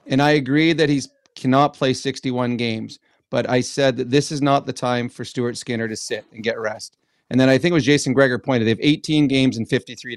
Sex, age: male, 40-59